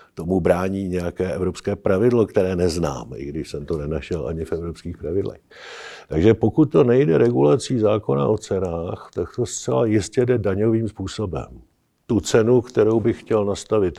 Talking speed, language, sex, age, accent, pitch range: 160 wpm, Czech, male, 50-69, native, 95-115 Hz